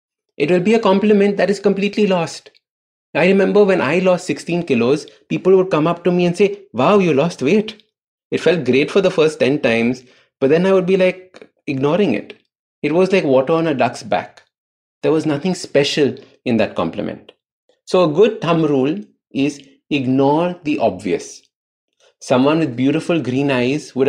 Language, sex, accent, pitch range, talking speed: English, male, Indian, 130-180 Hz, 185 wpm